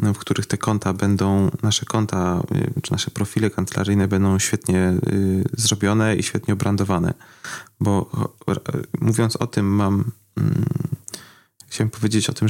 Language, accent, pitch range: Polish, native, 100-115 Hz